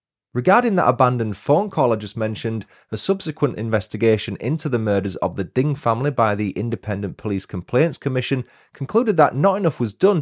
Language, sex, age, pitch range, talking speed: English, male, 30-49, 100-135 Hz, 175 wpm